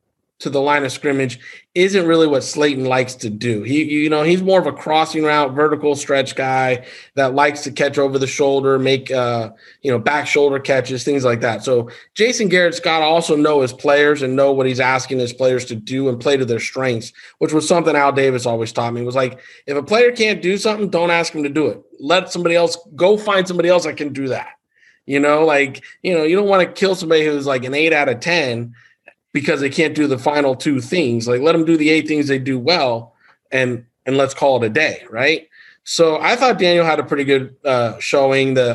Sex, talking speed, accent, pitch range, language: male, 235 wpm, American, 125-155 Hz, English